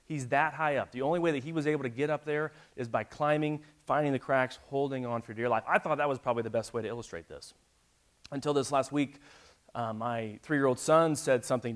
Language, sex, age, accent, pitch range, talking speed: English, male, 30-49, American, 115-145 Hz, 240 wpm